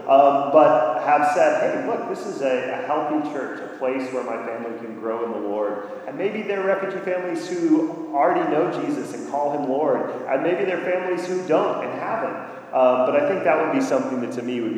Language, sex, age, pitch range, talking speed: English, male, 30-49, 115-145 Hz, 230 wpm